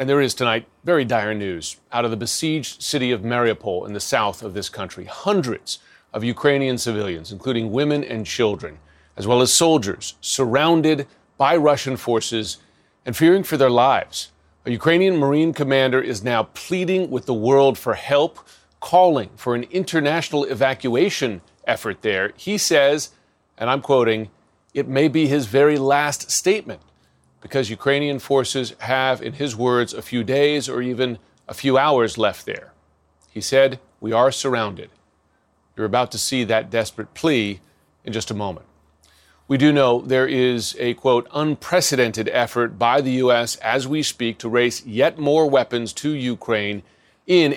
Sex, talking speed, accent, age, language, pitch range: male, 160 wpm, American, 40-59, English, 110-145 Hz